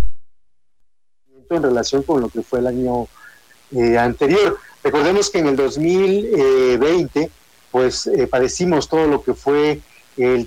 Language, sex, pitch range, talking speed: Spanish, male, 125-175 Hz, 130 wpm